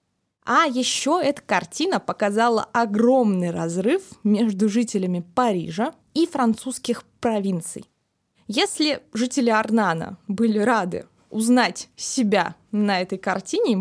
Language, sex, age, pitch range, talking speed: Russian, female, 20-39, 195-255 Hz, 105 wpm